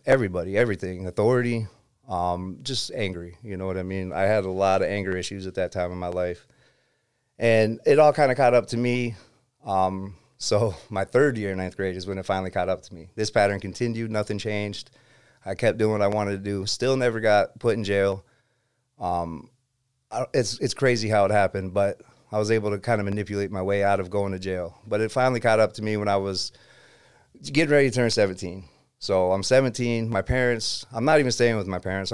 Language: English